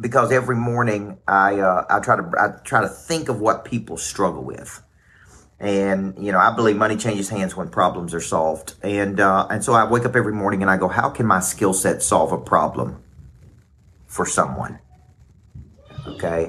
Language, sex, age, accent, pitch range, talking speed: English, male, 50-69, American, 95-120 Hz, 190 wpm